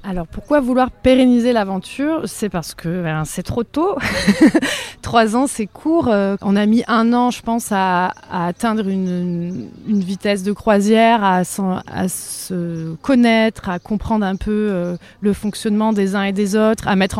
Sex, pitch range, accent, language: female, 195-230 Hz, French, French